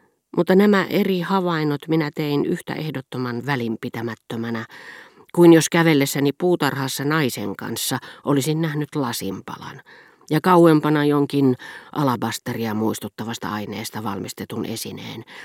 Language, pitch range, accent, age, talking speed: Finnish, 120-160 Hz, native, 40-59, 100 wpm